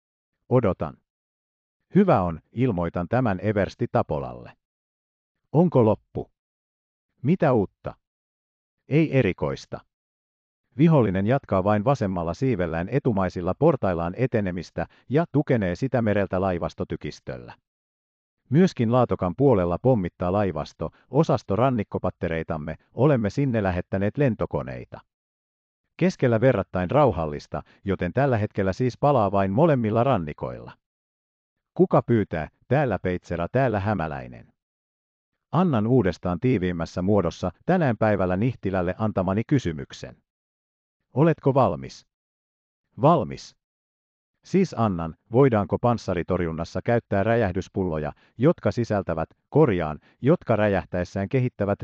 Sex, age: male, 50-69